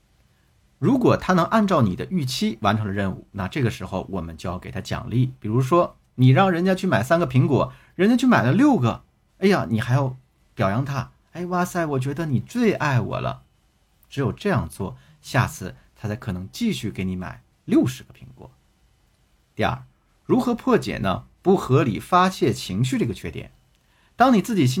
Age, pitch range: 50-69, 100-150 Hz